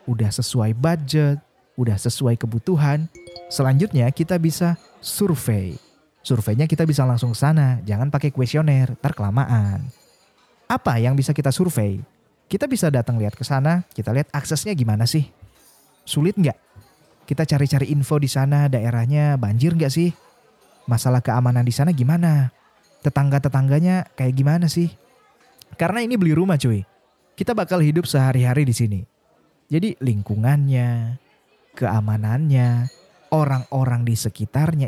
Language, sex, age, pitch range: Indonesian, male, 20-39, 125-170 Hz